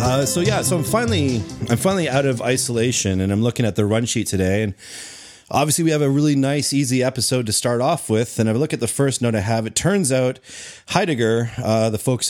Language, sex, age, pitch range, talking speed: English, male, 30-49, 105-135 Hz, 240 wpm